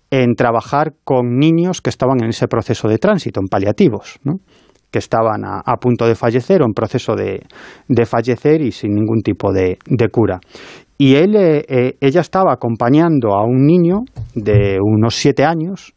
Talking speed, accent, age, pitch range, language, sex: 170 wpm, Spanish, 30-49, 115-150 Hz, Spanish, male